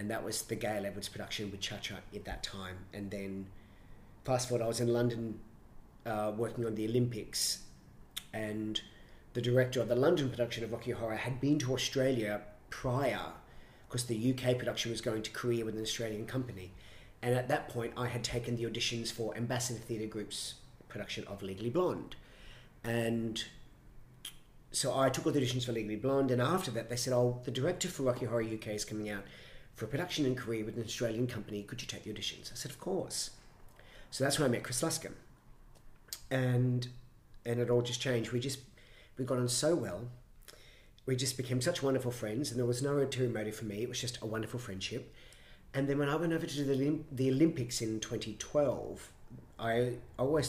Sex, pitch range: male, 110-125 Hz